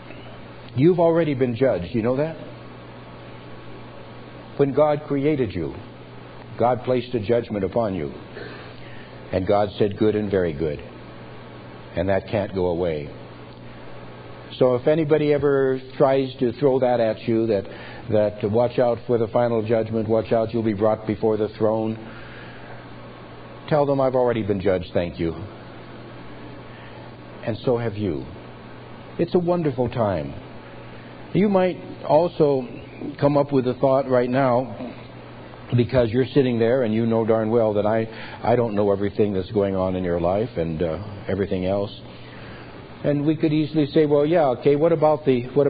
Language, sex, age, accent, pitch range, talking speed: English, male, 60-79, American, 100-135 Hz, 155 wpm